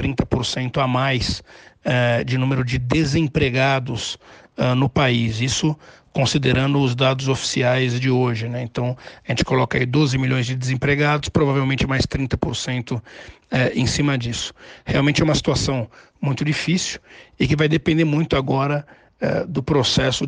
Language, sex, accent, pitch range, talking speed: Portuguese, male, Brazilian, 130-145 Hz, 150 wpm